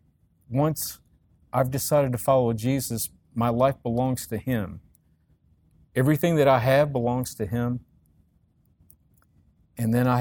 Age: 50-69